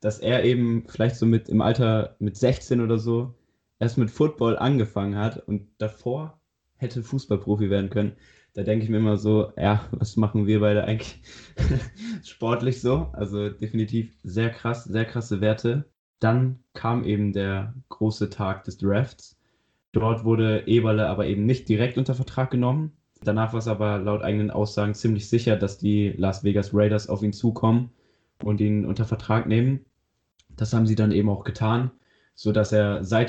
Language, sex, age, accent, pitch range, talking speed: German, male, 20-39, German, 105-115 Hz, 170 wpm